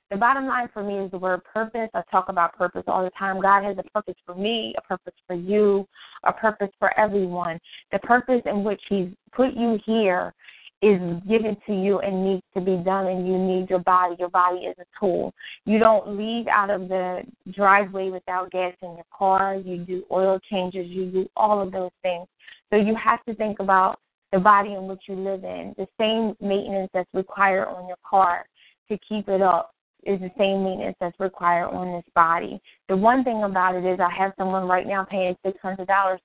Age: 20-39